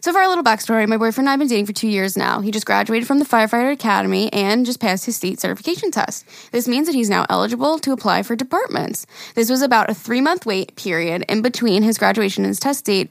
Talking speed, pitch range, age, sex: 250 wpm, 205-250 Hz, 10-29, female